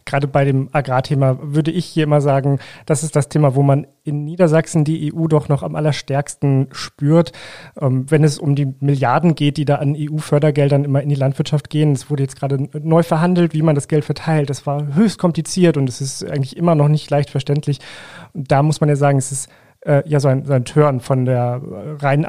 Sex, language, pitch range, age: male, German, 140-160 Hz, 30-49